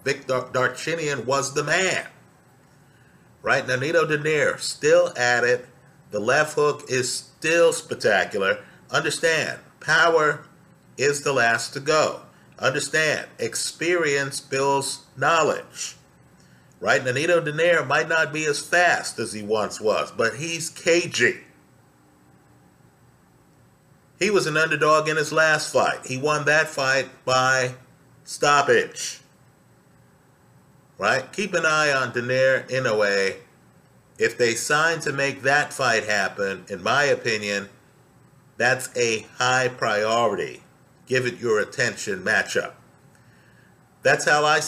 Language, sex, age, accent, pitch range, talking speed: English, male, 50-69, American, 130-165 Hz, 120 wpm